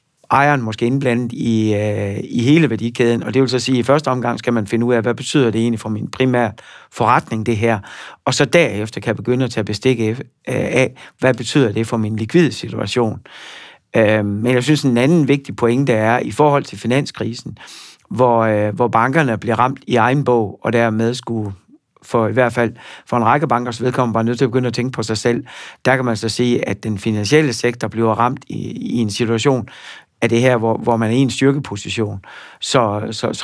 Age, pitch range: 60-79, 110-130 Hz